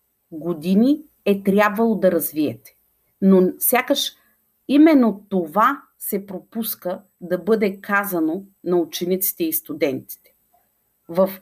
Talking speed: 100 wpm